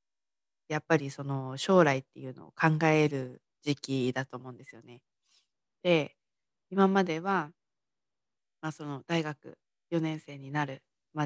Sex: female